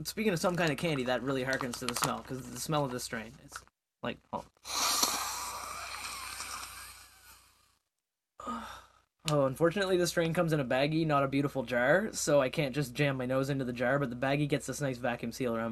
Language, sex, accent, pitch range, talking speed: English, male, American, 135-180 Hz, 200 wpm